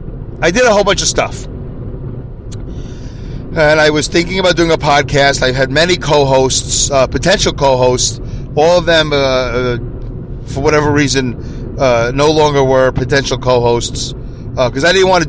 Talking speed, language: 165 wpm, English